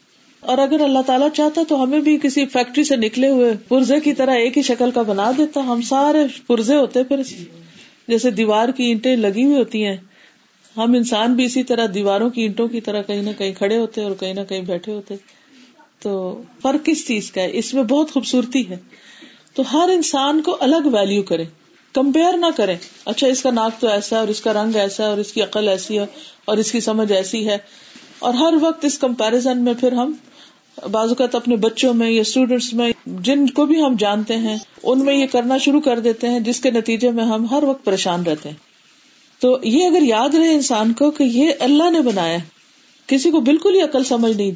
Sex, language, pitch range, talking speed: female, Urdu, 220-280 Hz, 215 wpm